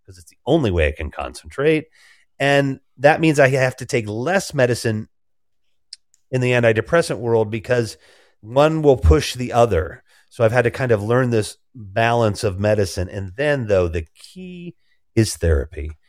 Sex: male